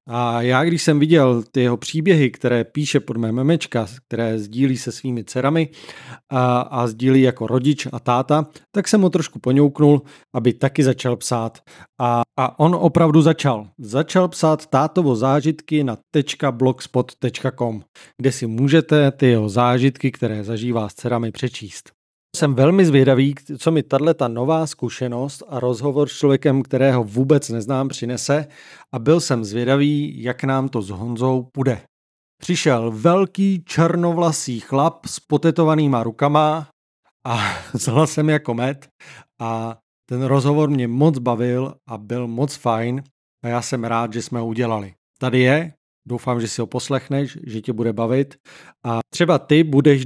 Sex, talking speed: male, 150 wpm